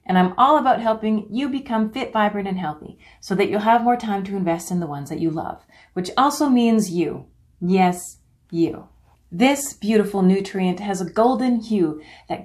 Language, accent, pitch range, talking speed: English, American, 165-225 Hz, 190 wpm